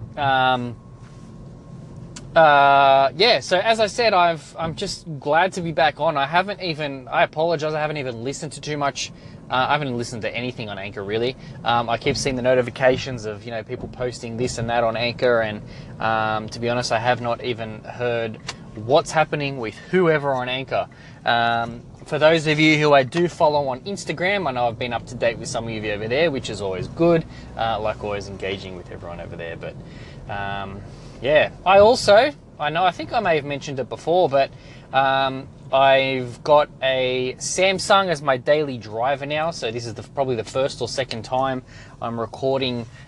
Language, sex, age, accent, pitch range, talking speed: English, male, 20-39, Australian, 115-150 Hz, 200 wpm